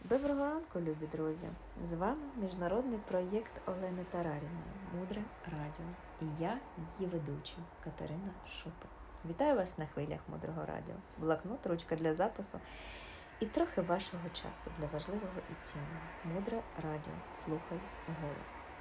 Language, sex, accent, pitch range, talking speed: Ukrainian, female, native, 155-205 Hz, 130 wpm